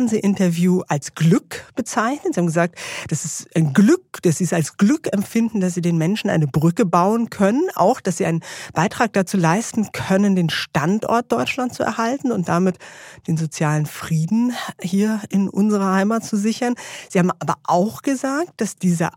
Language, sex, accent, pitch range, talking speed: German, female, German, 160-220 Hz, 180 wpm